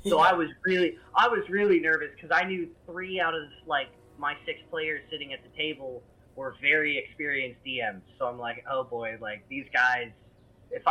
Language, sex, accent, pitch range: English, male, American, 125-165 Hz